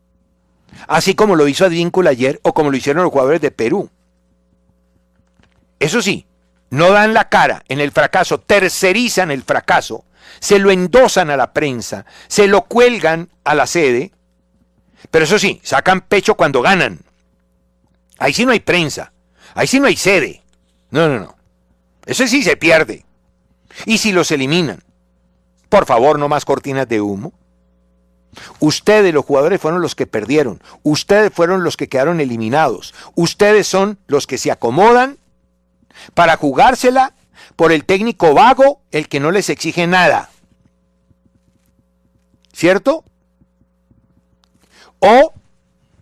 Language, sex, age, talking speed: Spanish, male, 60-79, 140 wpm